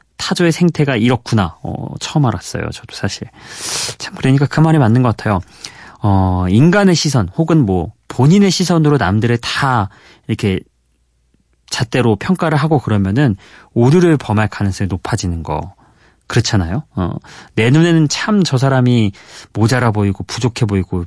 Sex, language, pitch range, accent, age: male, Korean, 100-150 Hz, native, 30-49